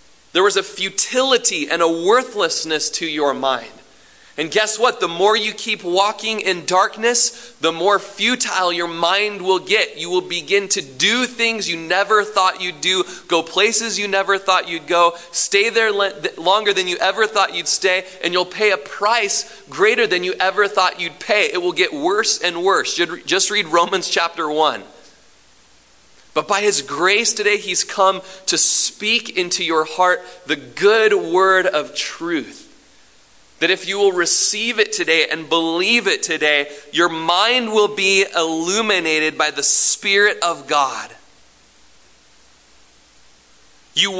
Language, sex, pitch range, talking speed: English, male, 165-215 Hz, 155 wpm